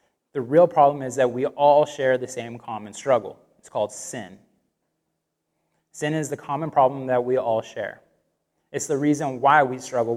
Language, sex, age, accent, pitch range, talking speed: English, male, 20-39, American, 120-145 Hz, 175 wpm